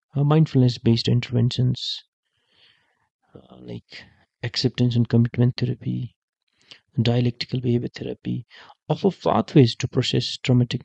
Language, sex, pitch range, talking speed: English, male, 120-130 Hz, 85 wpm